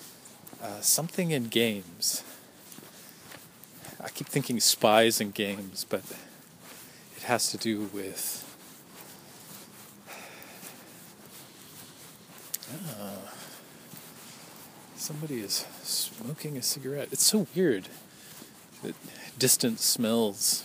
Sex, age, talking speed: male, 40-59, 80 wpm